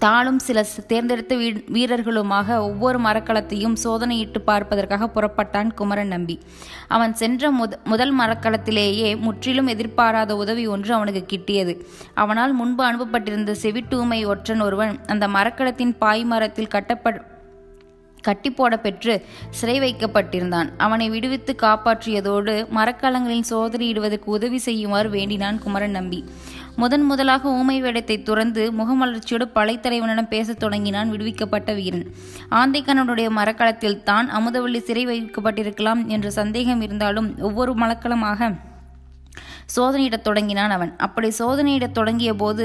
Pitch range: 210-240 Hz